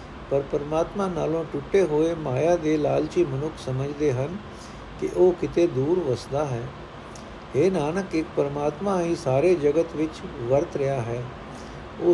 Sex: male